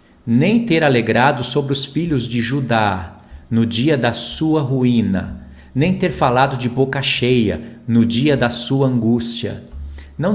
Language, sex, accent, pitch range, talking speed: Portuguese, male, Brazilian, 110-135 Hz, 145 wpm